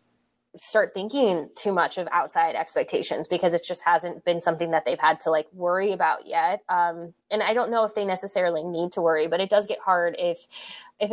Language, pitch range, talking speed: English, 170-215 Hz, 210 wpm